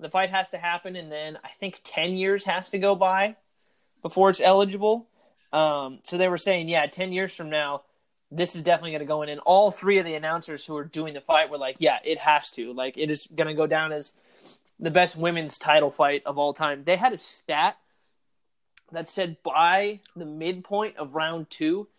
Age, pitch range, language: 20-39, 155-195 Hz, English